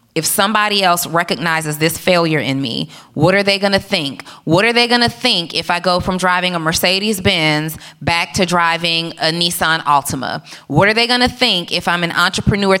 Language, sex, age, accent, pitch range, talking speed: English, female, 20-39, American, 160-200 Hz, 205 wpm